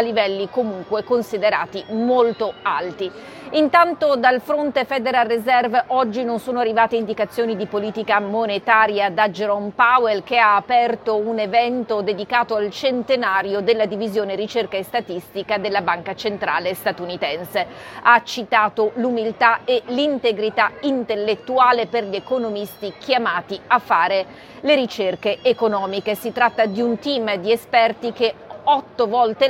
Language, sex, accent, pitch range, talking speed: Italian, female, native, 210-245 Hz, 125 wpm